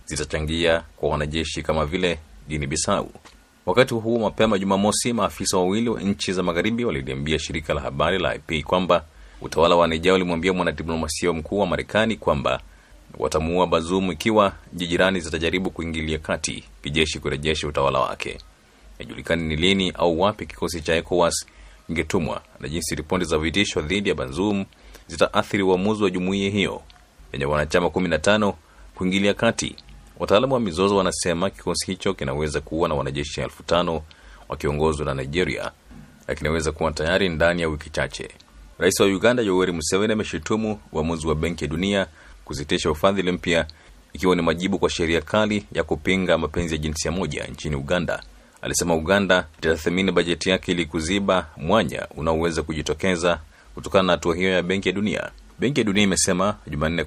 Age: 30-49